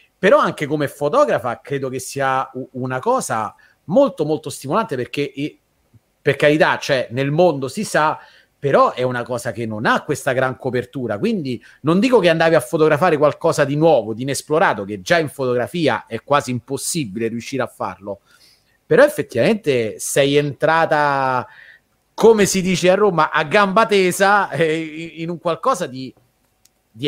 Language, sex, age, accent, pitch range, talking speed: Italian, male, 30-49, native, 130-170 Hz, 155 wpm